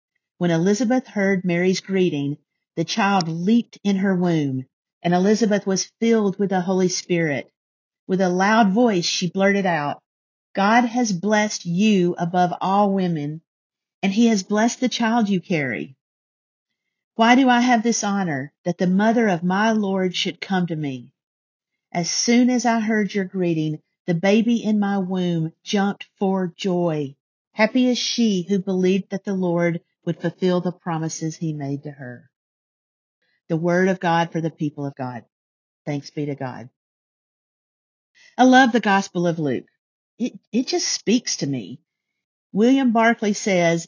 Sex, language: female, English